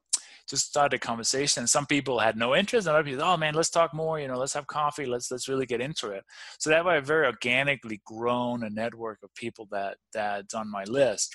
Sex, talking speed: male, 235 wpm